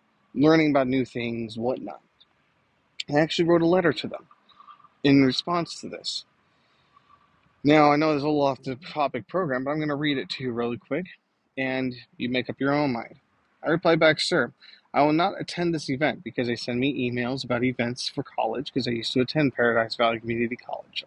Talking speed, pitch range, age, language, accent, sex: 200 wpm, 125-165 Hz, 30-49, English, American, male